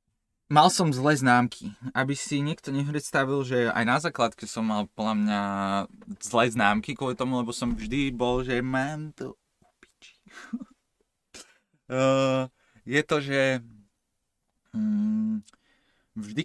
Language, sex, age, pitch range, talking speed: Slovak, male, 20-39, 110-150 Hz, 115 wpm